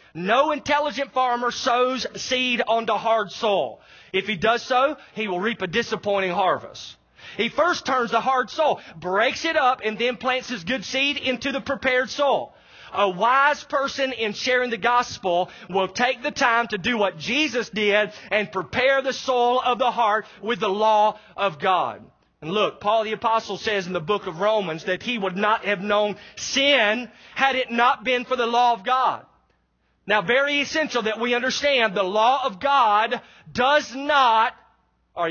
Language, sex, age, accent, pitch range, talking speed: English, male, 30-49, American, 210-260 Hz, 180 wpm